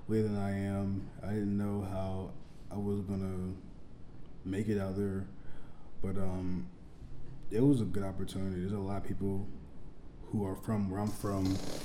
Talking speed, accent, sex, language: 160 wpm, American, male, English